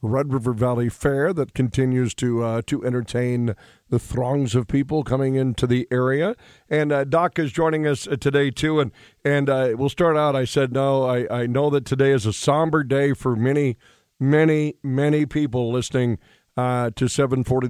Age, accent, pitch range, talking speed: 50-69, American, 120-140 Hz, 180 wpm